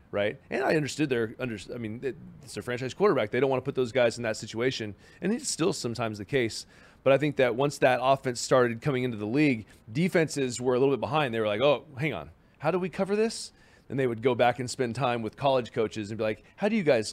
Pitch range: 115-140 Hz